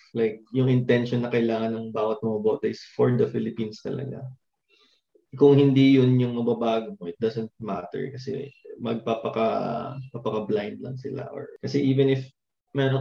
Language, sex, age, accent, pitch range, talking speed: Filipino, male, 20-39, native, 115-130 Hz, 140 wpm